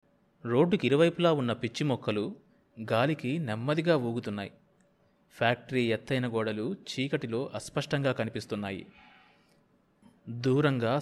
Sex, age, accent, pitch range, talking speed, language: male, 30-49, native, 115-150 Hz, 75 wpm, Telugu